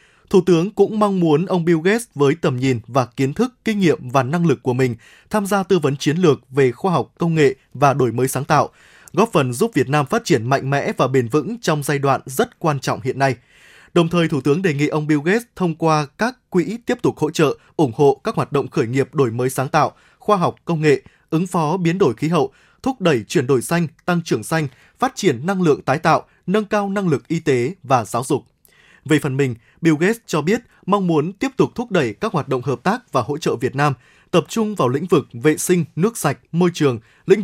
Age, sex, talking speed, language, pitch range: 20-39, male, 245 wpm, Vietnamese, 135-185 Hz